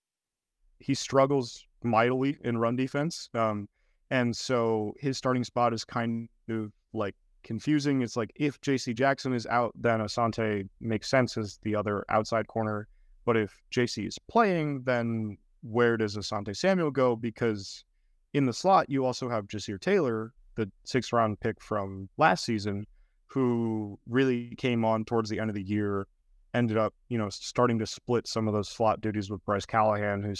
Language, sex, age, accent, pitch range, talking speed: English, male, 30-49, American, 100-120 Hz, 170 wpm